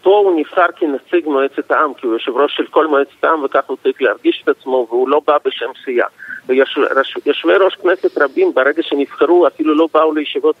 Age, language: 50-69, Hebrew